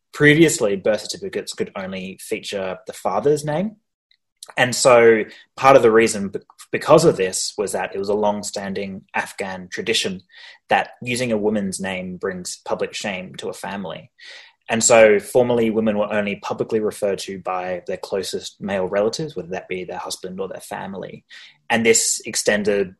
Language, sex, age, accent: English, male, 20-39, Australian